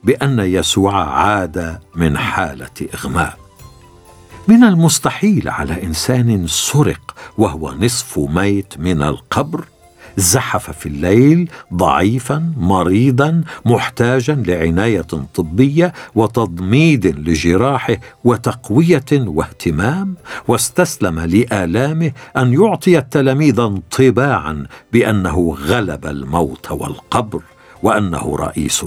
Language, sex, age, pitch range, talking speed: Arabic, male, 60-79, 90-130 Hz, 85 wpm